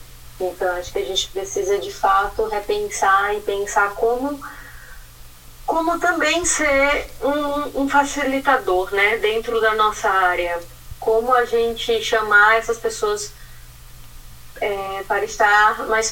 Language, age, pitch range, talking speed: Portuguese, 10-29, 195-245 Hz, 125 wpm